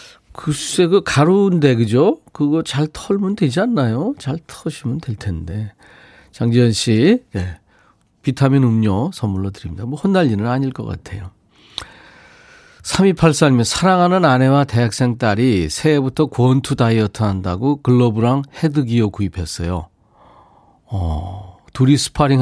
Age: 40-59